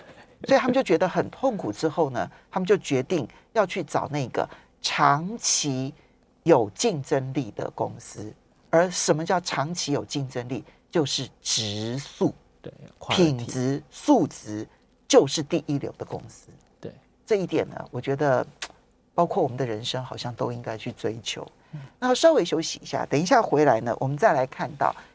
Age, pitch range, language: 40-59, 140-210 Hz, Chinese